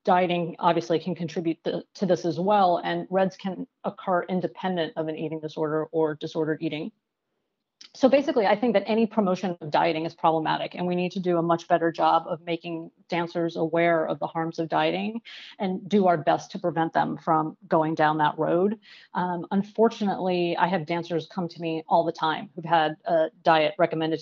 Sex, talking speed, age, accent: female, 190 wpm, 30-49, American